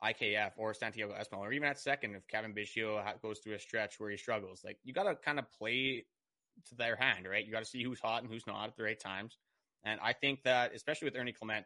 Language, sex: English, male